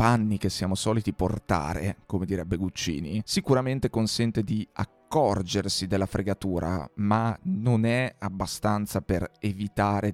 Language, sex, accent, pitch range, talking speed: Italian, male, native, 100-130 Hz, 120 wpm